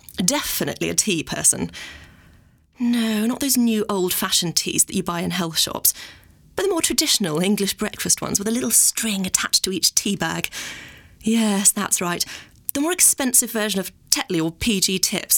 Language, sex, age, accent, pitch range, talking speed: English, female, 30-49, British, 175-225 Hz, 175 wpm